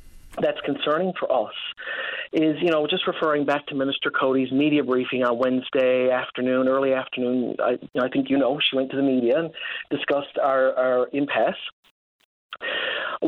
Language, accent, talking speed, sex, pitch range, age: English, American, 165 wpm, male, 140-200 Hz, 40-59